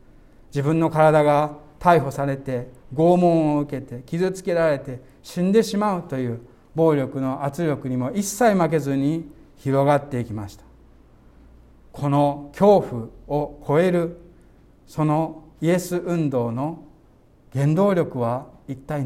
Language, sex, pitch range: Japanese, male, 135-185 Hz